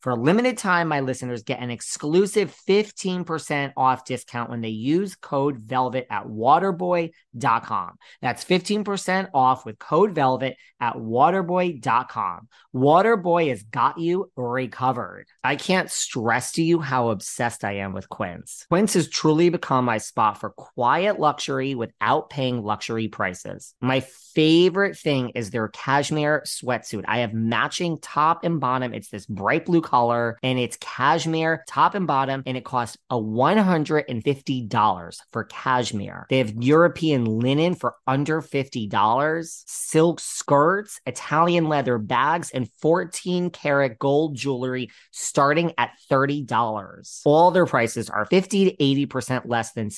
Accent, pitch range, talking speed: American, 120-165 Hz, 135 wpm